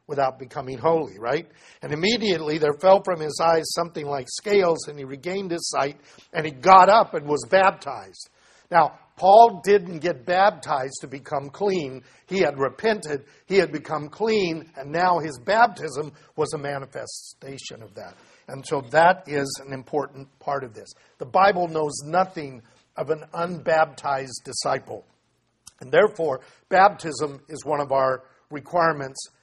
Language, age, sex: English, 50-69, male